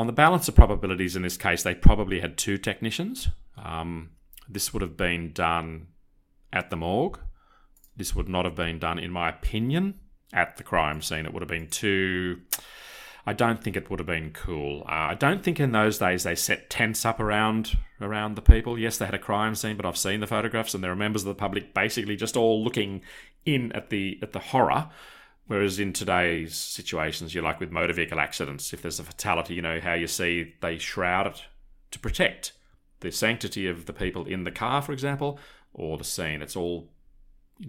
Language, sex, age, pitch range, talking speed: English, male, 30-49, 85-110 Hz, 210 wpm